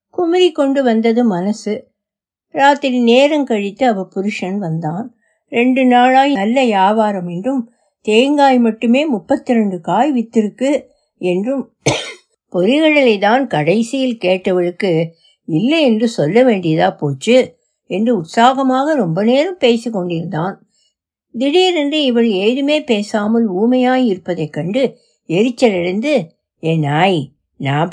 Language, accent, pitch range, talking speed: Tamil, native, 180-260 Hz, 95 wpm